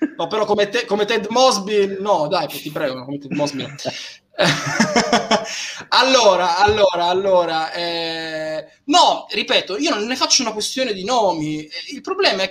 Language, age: Italian, 20-39